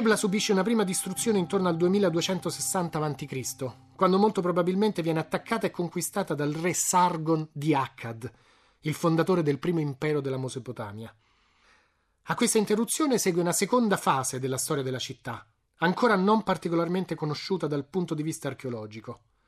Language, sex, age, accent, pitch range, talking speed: Italian, male, 30-49, native, 135-190 Hz, 150 wpm